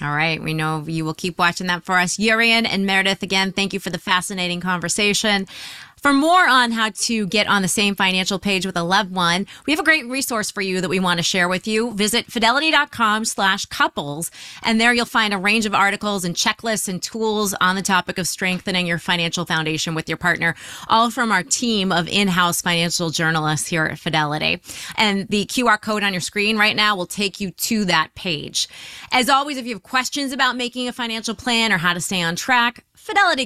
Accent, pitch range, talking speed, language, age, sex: American, 180-235 Hz, 215 wpm, English, 30-49, female